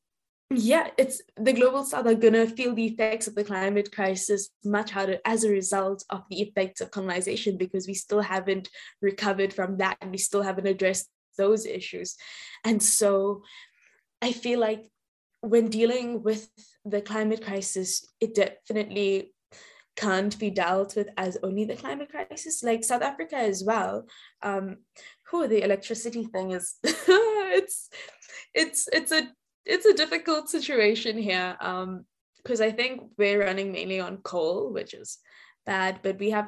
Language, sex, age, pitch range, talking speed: English, female, 10-29, 190-225 Hz, 160 wpm